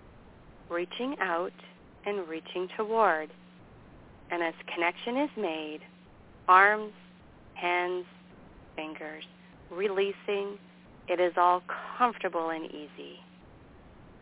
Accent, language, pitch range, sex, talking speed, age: American, English, 160-200 Hz, female, 85 wpm, 40-59